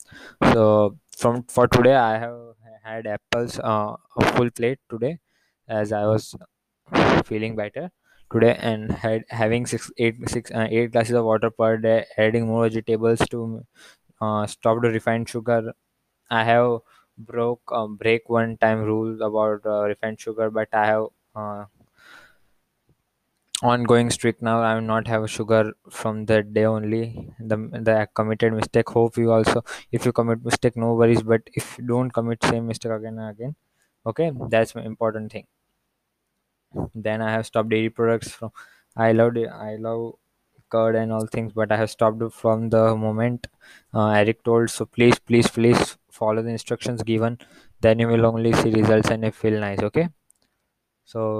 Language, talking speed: English, 165 wpm